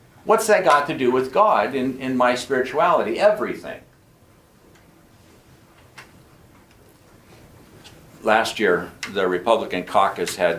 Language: English